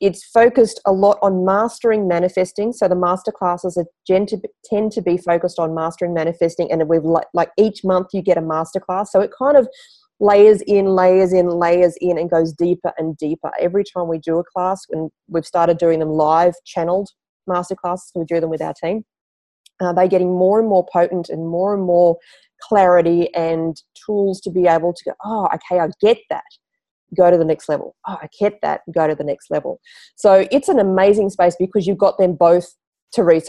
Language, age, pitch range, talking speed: English, 30-49, 170-200 Hz, 200 wpm